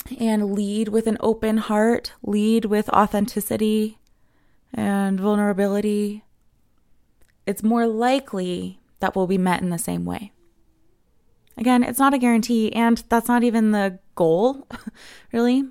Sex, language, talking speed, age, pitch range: female, English, 130 wpm, 20-39, 180-220 Hz